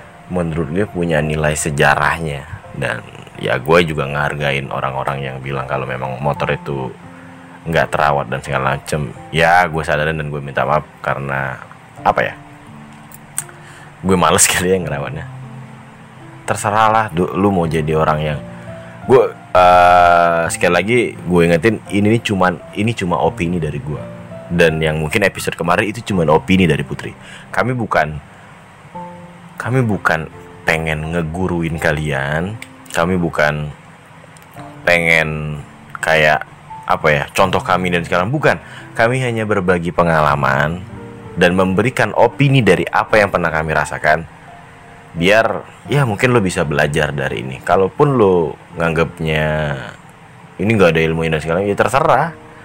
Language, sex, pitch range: Indonesian, male, 75-95 Hz